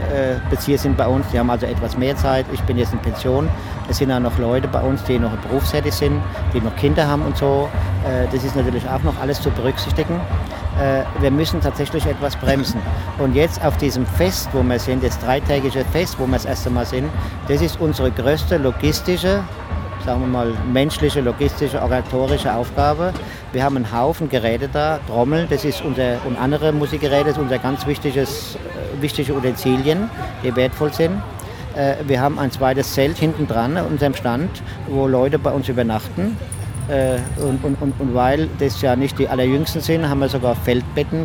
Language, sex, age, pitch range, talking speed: English, male, 50-69, 115-145 Hz, 190 wpm